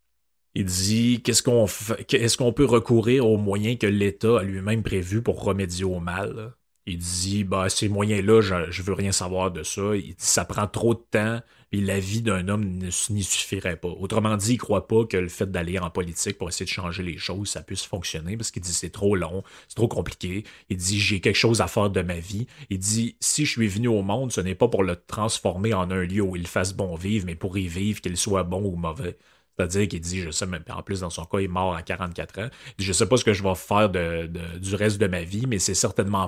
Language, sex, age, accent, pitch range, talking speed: French, male, 30-49, Canadian, 90-105 Hz, 250 wpm